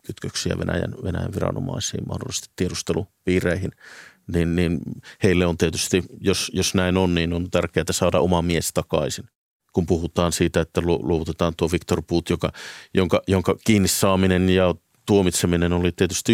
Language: Finnish